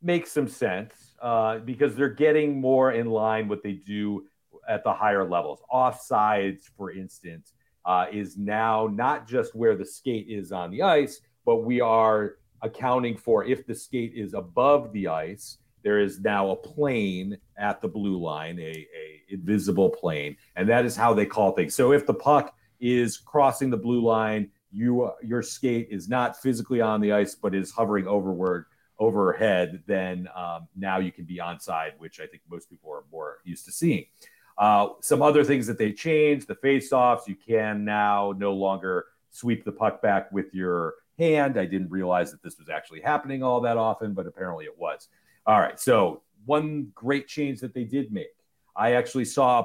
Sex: male